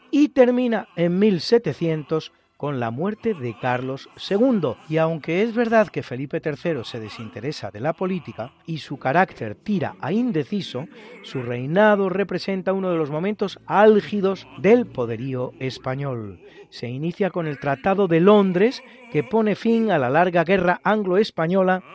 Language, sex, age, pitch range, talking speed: Spanish, male, 40-59, 145-210 Hz, 150 wpm